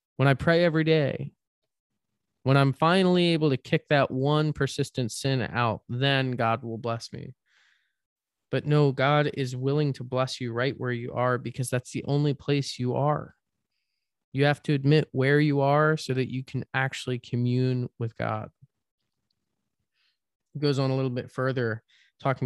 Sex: male